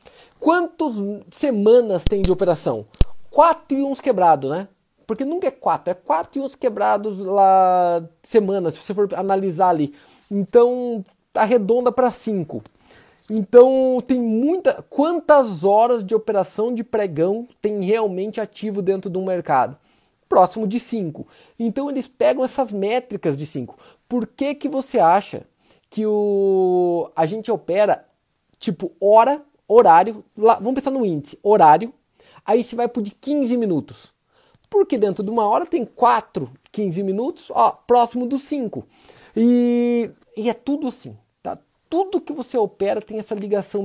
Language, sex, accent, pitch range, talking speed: Portuguese, male, Brazilian, 190-250 Hz, 150 wpm